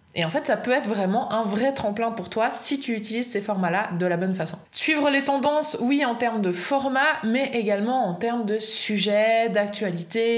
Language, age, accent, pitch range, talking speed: French, 20-39, French, 200-270 Hz, 210 wpm